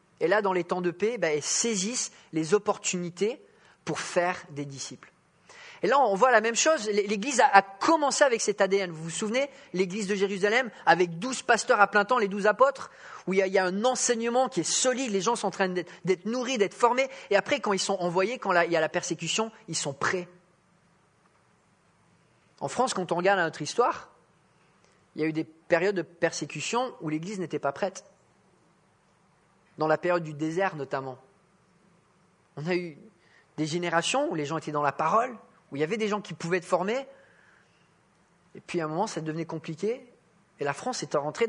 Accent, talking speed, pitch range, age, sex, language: French, 200 wpm, 165-220 Hz, 30-49, male, English